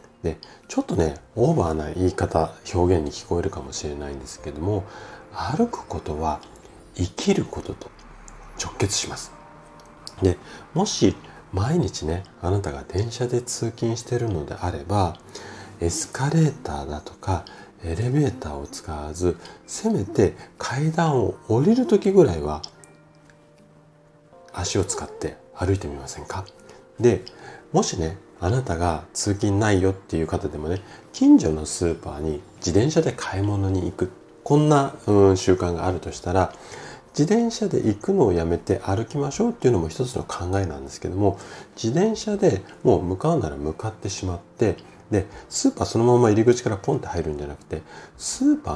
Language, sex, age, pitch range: Japanese, male, 40-59, 80-120 Hz